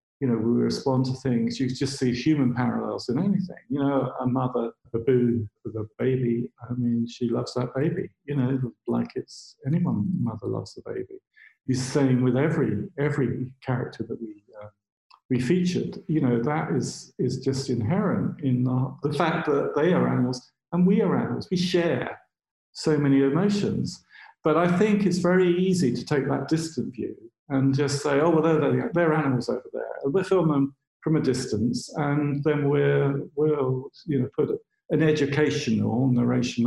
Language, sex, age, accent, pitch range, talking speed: English, male, 50-69, British, 125-160 Hz, 180 wpm